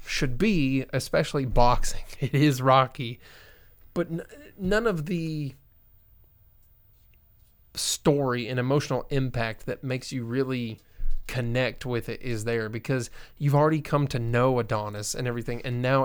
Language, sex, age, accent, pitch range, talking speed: English, male, 20-39, American, 115-140 Hz, 135 wpm